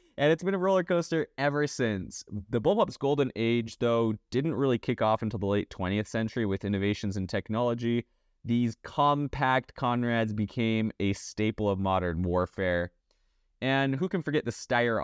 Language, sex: English, male